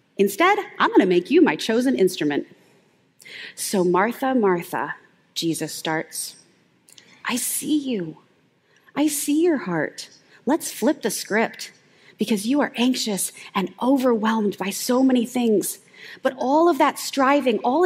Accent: American